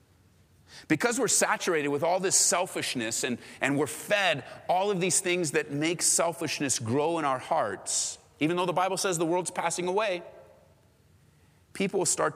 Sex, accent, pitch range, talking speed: male, American, 130-205 Hz, 160 wpm